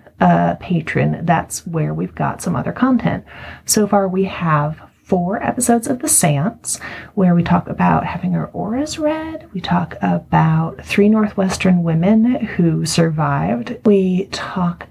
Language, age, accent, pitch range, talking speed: English, 30-49, American, 150-200 Hz, 145 wpm